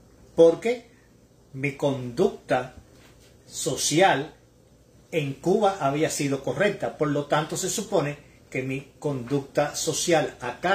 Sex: male